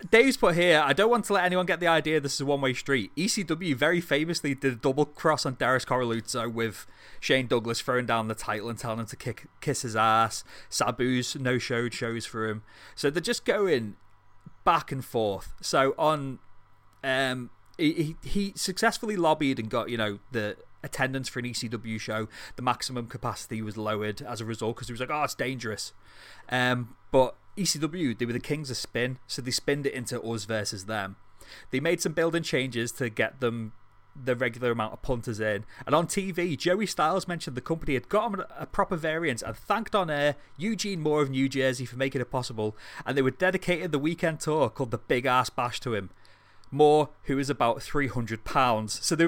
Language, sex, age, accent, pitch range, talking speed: English, male, 30-49, British, 115-155 Hz, 205 wpm